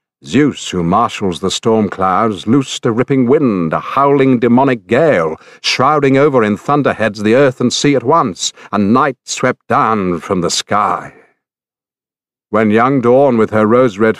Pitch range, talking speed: 105-135 Hz, 155 wpm